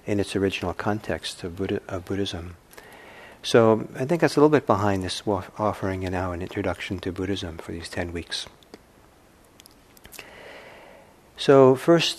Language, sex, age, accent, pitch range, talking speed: English, male, 60-79, American, 95-115 Hz, 145 wpm